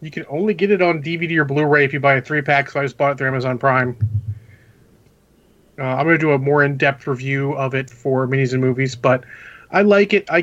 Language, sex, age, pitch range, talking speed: English, male, 30-49, 130-160 Hz, 240 wpm